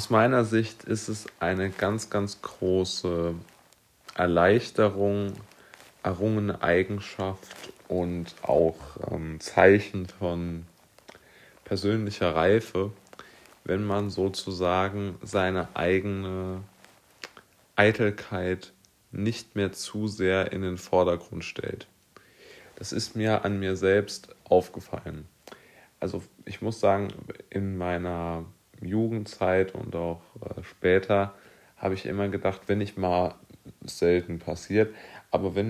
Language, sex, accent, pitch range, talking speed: German, male, German, 85-100 Hz, 105 wpm